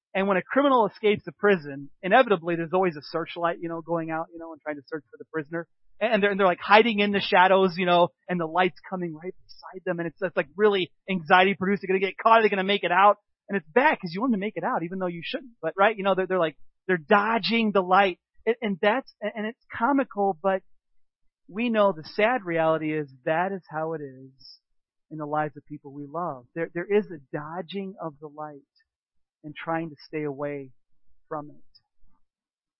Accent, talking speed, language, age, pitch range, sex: American, 230 wpm, English, 30-49, 160-210 Hz, male